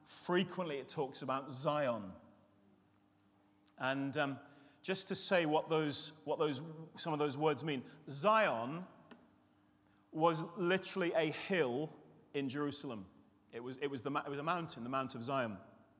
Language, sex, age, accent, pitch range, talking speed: English, male, 30-49, British, 135-170 Hz, 145 wpm